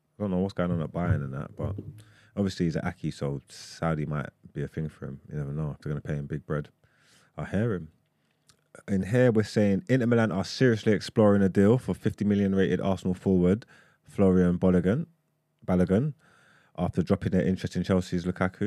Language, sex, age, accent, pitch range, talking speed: English, male, 20-39, British, 85-110 Hz, 205 wpm